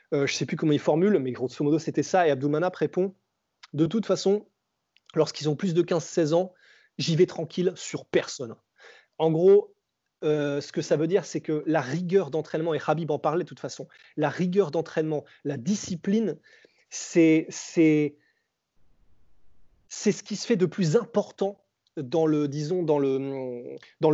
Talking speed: 175 wpm